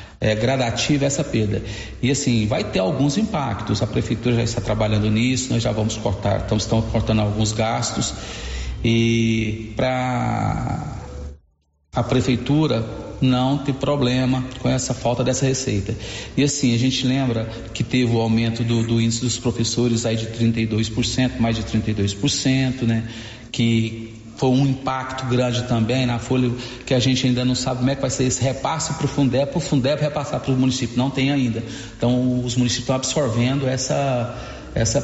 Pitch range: 115-145 Hz